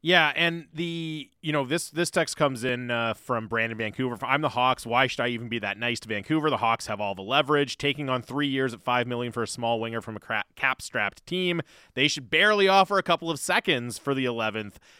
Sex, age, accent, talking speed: male, 30-49, American, 230 wpm